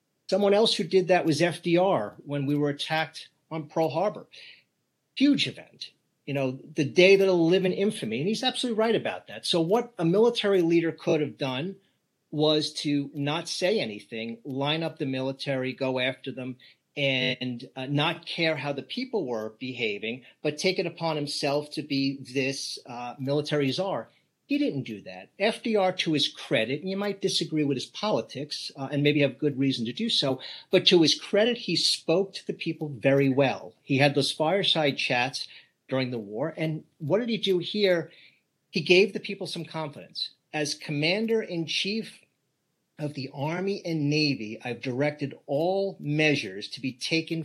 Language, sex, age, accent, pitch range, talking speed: English, male, 40-59, American, 140-185 Hz, 175 wpm